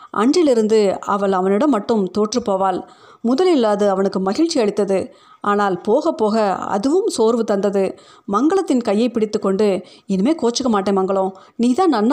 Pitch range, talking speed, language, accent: 200-245 Hz, 130 wpm, Tamil, native